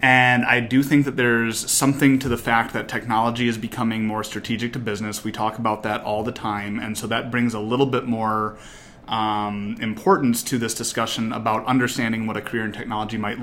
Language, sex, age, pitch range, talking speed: English, male, 30-49, 110-130 Hz, 205 wpm